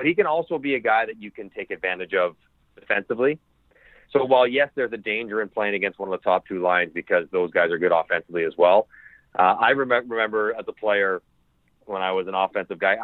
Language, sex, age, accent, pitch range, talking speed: English, male, 30-49, American, 100-130 Hz, 225 wpm